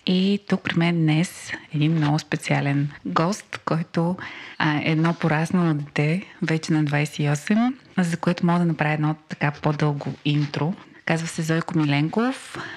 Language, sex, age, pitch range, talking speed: Bulgarian, female, 20-39, 150-175 Hz, 140 wpm